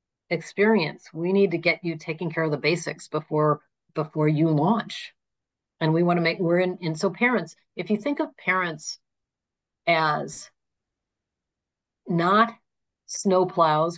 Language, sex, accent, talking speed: English, female, American, 145 wpm